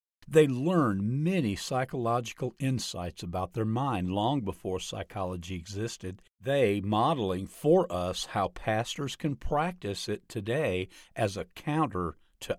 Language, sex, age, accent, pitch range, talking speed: English, male, 50-69, American, 95-140 Hz, 125 wpm